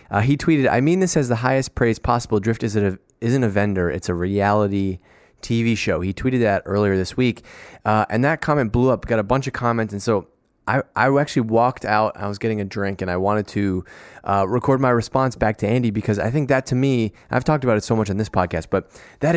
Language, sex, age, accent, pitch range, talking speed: English, male, 20-39, American, 100-125 Hz, 245 wpm